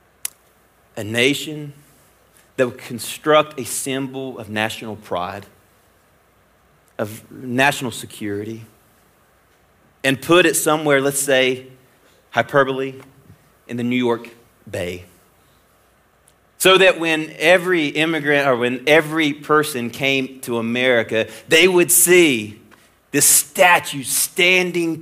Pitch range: 110-150 Hz